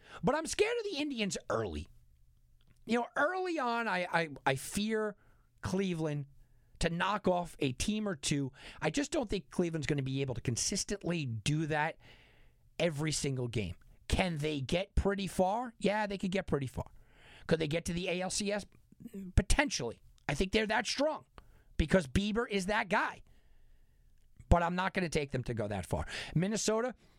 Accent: American